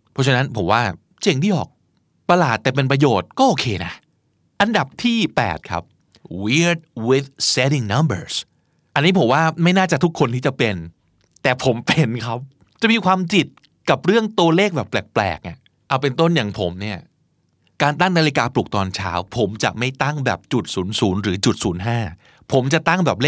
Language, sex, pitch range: Thai, male, 115-165 Hz